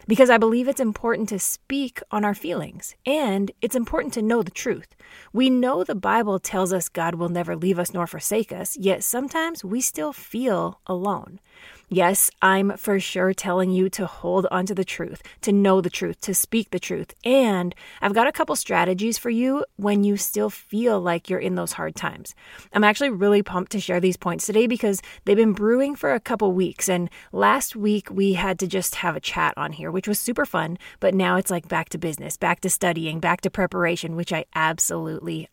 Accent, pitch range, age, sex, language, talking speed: American, 180-240 Hz, 20-39, female, English, 210 wpm